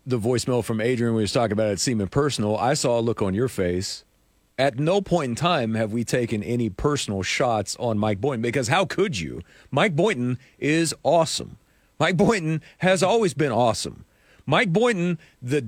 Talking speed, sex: 190 wpm, male